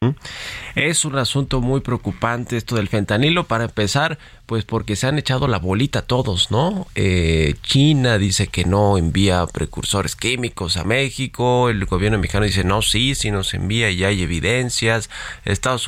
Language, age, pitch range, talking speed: Spanish, 30-49, 100-125 Hz, 160 wpm